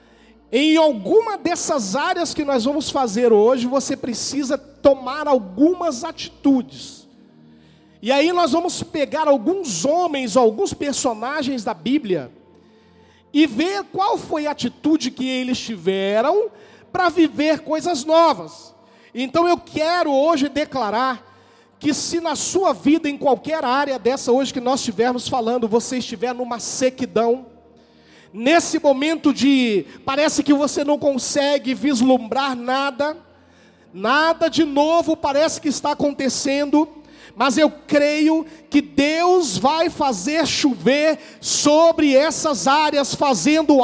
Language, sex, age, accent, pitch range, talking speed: Portuguese, male, 40-59, Brazilian, 260-315 Hz, 125 wpm